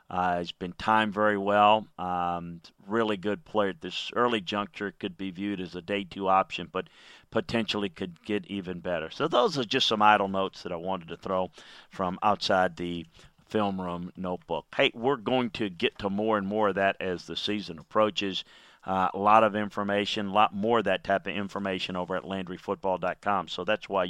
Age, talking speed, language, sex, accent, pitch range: 40-59, 200 wpm, English, male, American, 90-105 Hz